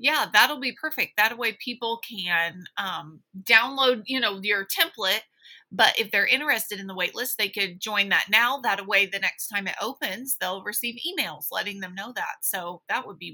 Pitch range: 215-280 Hz